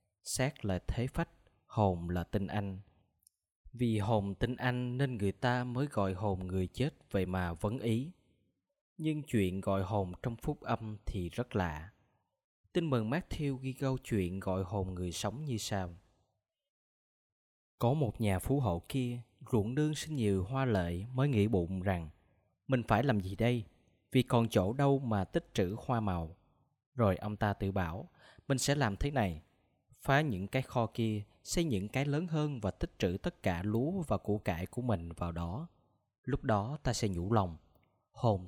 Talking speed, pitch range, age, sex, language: 180 wpm, 95-130 Hz, 20-39, male, Vietnamese